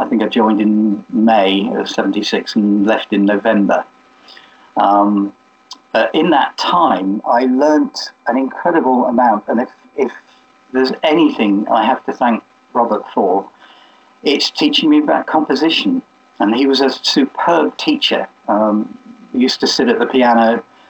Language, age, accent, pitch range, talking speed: English, 50-69, British, 110-155 Hz, 150 wpm